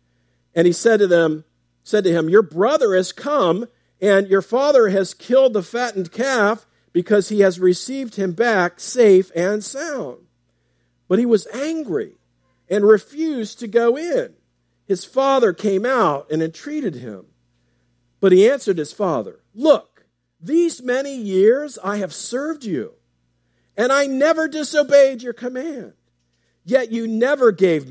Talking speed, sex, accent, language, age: 145 wpm, male, American, English, 50-69